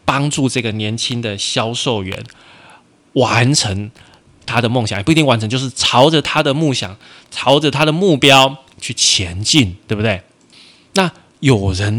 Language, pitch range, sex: Chinese, 105-145 Hz, male